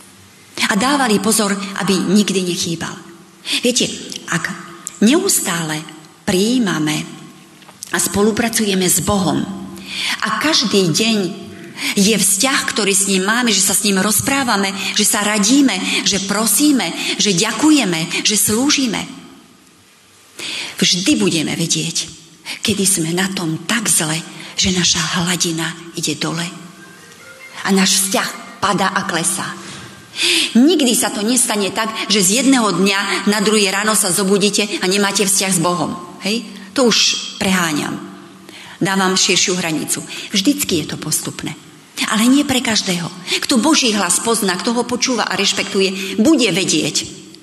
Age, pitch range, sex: 40-59, 175-230 Hz, female